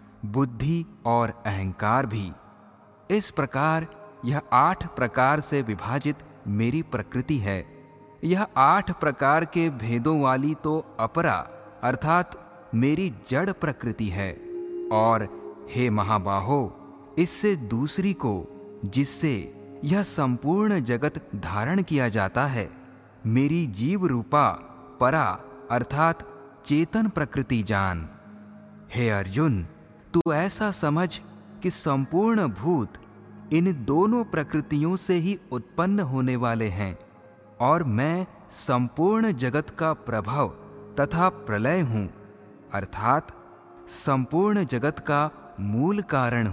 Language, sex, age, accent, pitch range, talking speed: Hindi, male, 30-49, native, 110-170 Hz, 105 wpm